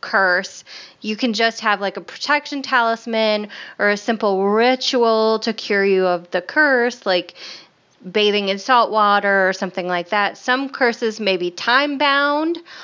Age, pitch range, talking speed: 20-39, 195-240 Hz, 160 wpm